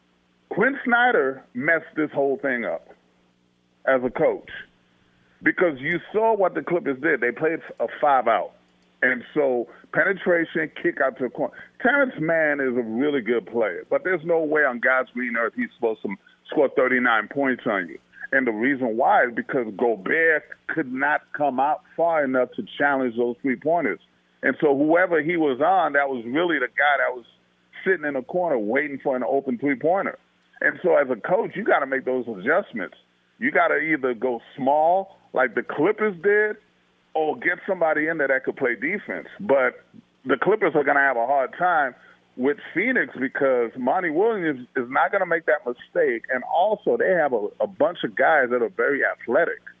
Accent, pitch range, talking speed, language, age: American, 120-180 Hz, 190 wpm, English, 40-59